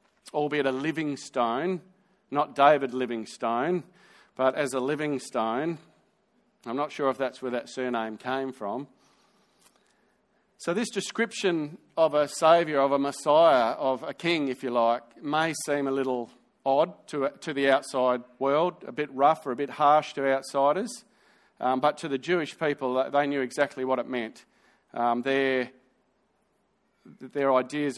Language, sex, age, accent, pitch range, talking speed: English, male, 40-59, Australian, 130-160 Hz, 155 wpm